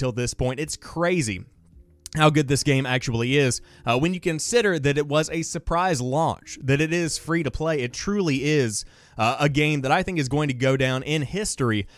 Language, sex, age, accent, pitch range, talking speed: English, male, 20-39, American, 125-170 Hz, 210 wpm